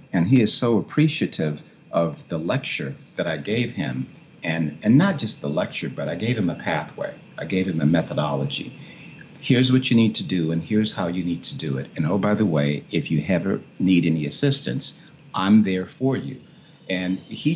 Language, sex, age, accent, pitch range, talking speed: English, male, 50-69, American, 85-115 Hz, 205 wpm